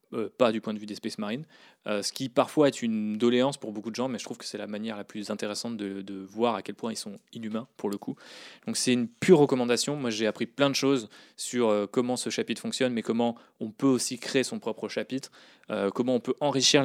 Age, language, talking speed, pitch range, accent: 20-39, French, 260 wpm, 110-125 Hz, French